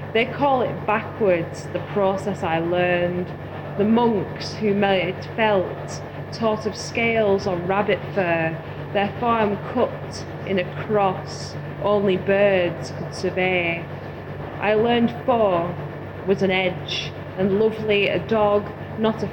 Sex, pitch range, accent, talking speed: female, 175-205 Hz, British, 130 wpm